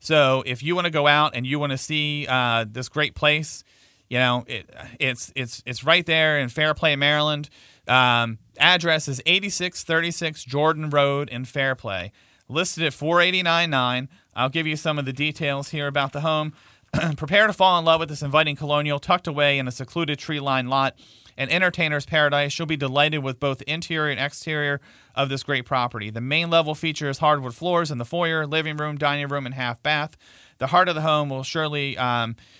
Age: 40-59